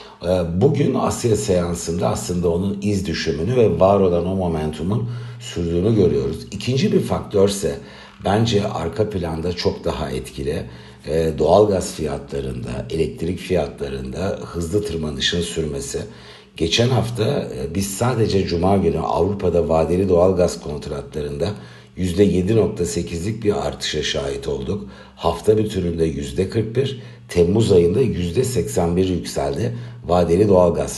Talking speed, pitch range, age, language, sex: 110 wpm, 80-105 Hz, 60-79, Turkish, male